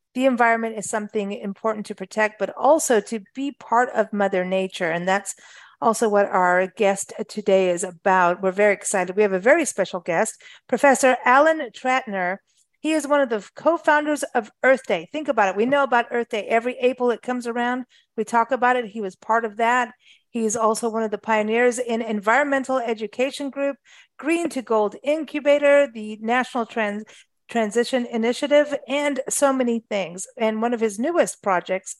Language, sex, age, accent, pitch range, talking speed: English, female, 50-69, American, 205-260 Hz, 180 wpm